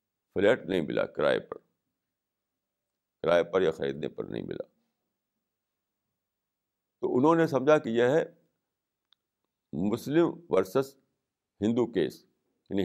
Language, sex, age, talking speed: Urdu, male, 60-79, 110 wpm